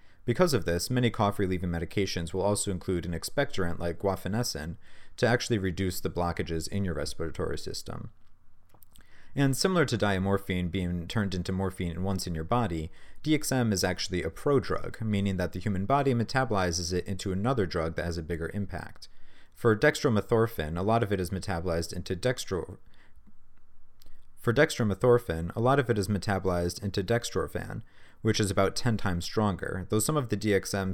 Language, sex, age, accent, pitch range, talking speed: English, male, 40-59, American, 85-110 Hz, 165 wpm